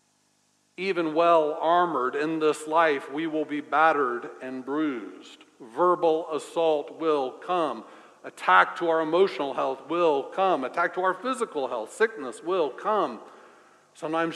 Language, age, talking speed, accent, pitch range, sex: English, 60-79, 135 wpm, American, 155-185 Hz, male